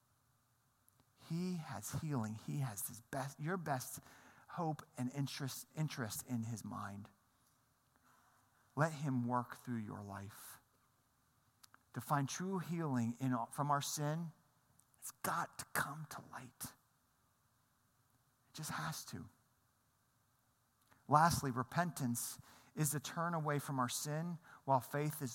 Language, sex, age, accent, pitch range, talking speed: English, male, 40-59, American, 130-185 Hz, 125 wpm